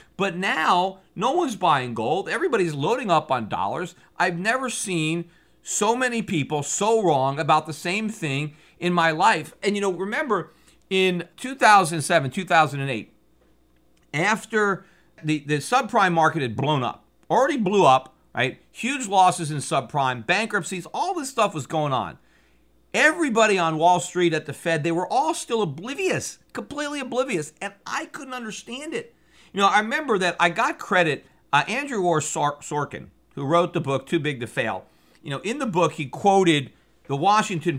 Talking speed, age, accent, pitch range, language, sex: 165 wpm, 50-69, American, 145-205 Hz, English, male